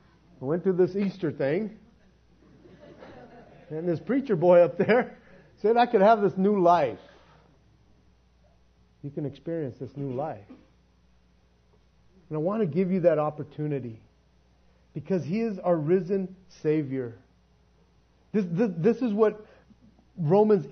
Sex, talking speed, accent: male, 130 wpm, American